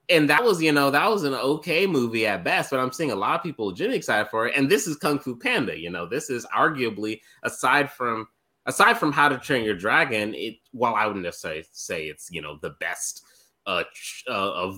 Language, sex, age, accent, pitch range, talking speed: English, male, 20-39, American, 90-135 Hz, 230 wpm